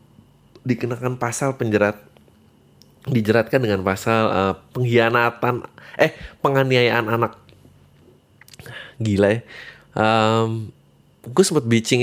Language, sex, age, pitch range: Indonesian, male, 20-39, 105-135 Hz